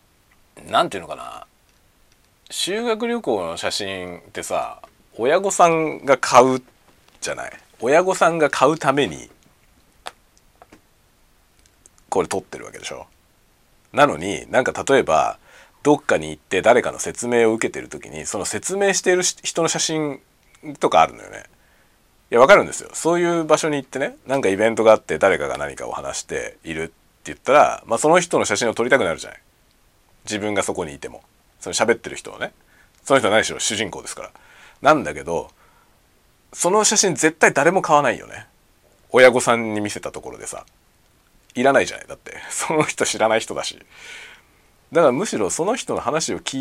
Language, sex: Japanese, male